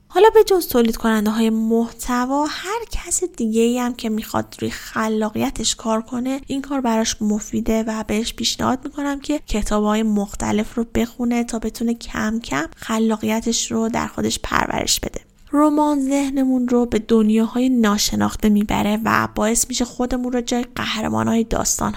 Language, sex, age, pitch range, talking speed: Persian, female, 10-29, 215-255 Hz, 160 wpm